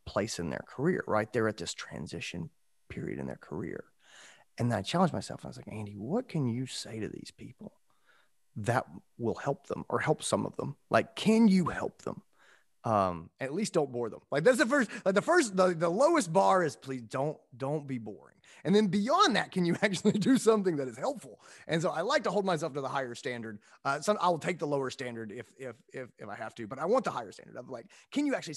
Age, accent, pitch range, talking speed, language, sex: 30-49, American, 105-165 Hz, 240 wpm, English, male